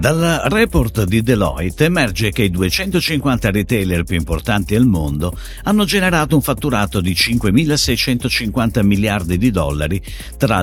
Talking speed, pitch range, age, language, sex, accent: 130 wpm, 90-145 Hz, 50-69, Italian, male, native